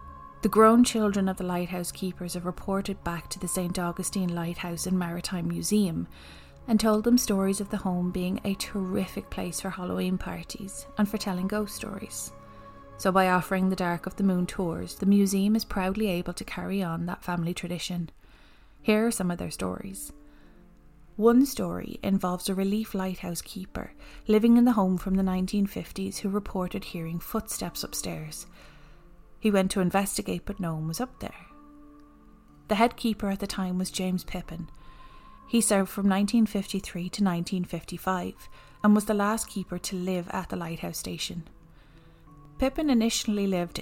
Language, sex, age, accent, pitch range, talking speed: English, female, 30-49, Irish, 175-205 Hz, 165 wpm